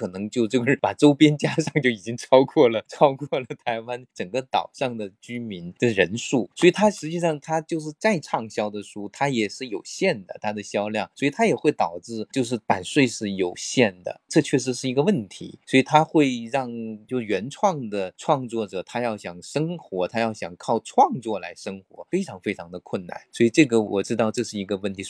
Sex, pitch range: male, 110-145 Hz